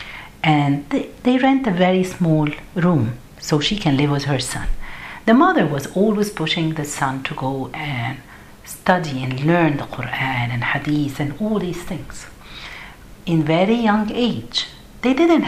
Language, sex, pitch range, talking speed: Arabic, female, 140-200 Hz, 165 wpm